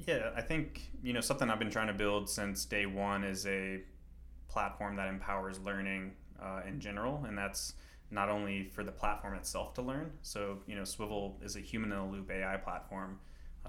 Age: 20-39